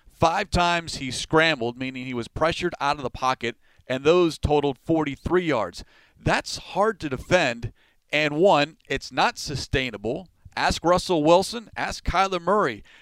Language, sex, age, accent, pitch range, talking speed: English, male, 40-59, American, 130-165 Hz, 150 wpm